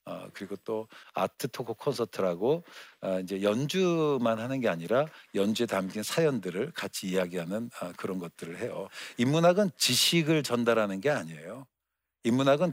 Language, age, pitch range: Korean, 60-79, 105-150 Hz